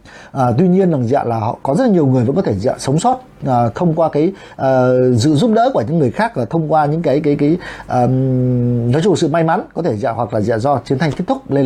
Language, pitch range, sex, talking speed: Vietnamese, 125-170 Hz, male, 300 wpm